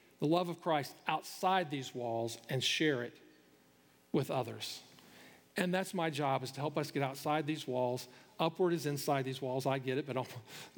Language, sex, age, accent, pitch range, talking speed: English, male, 40-59, American, 135-180 Hz, 190 wpm